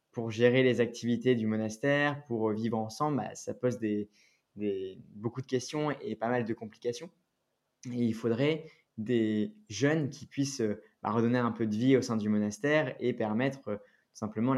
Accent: French